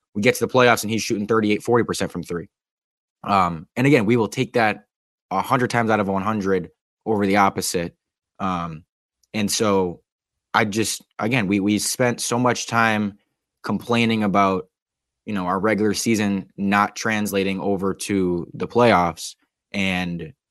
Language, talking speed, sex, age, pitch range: English, 160 wpm, male, 20-39, 95-115 Hz